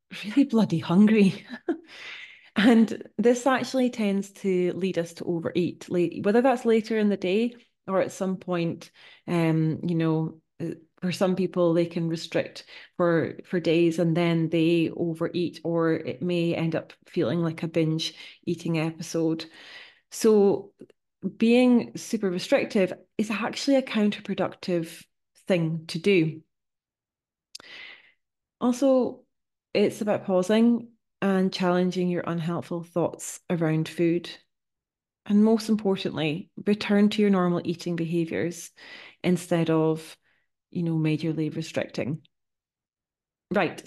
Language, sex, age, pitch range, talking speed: English, female, 30-49, 165-210 Hz, 120 wpm